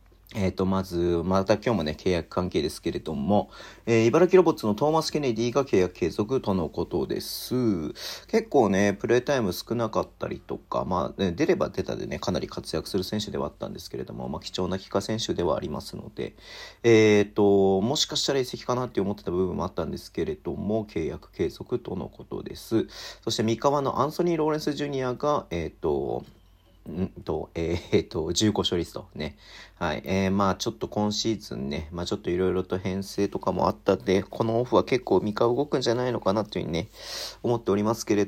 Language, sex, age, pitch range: Japanese, male, 40-59, 95-120 Hz